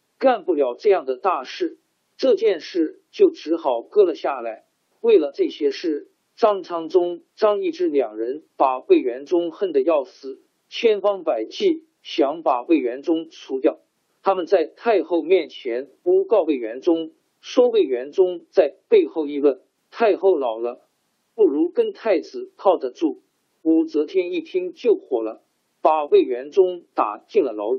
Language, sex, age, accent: Chinese, male, 50-69, native